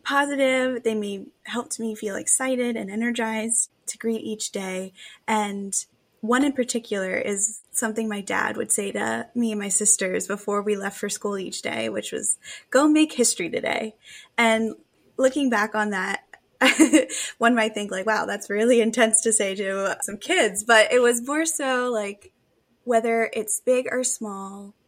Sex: female